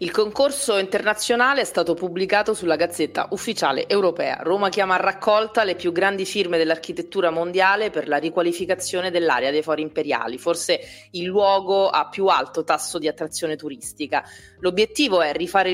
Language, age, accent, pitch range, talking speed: Italian, 30-49, native, 160-205 Hz, 155 wpm